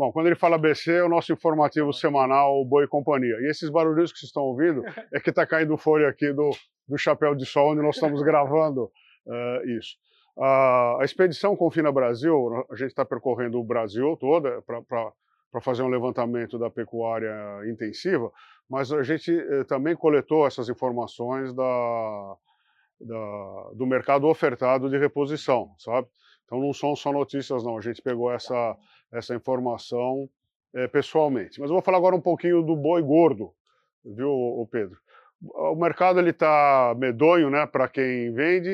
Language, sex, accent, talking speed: Portuguese, male, Brazilian, 165 wpm